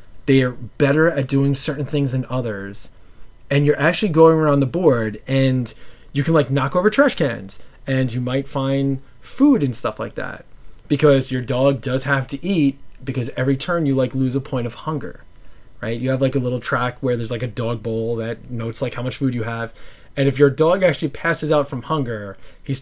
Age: 20-39